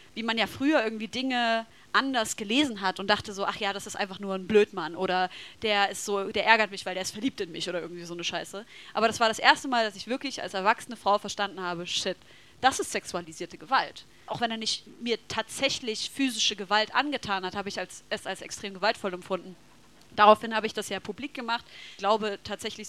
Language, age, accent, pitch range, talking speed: German, 30-49, German, 180-215 Hz, 215 wpm